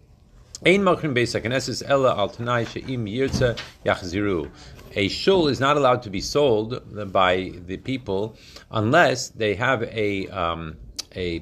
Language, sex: Hebrew, male